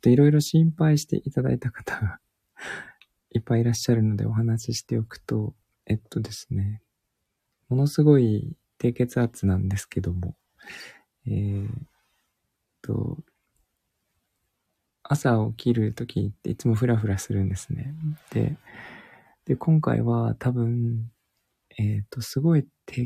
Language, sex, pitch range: Japanese, male, 100-125 Hz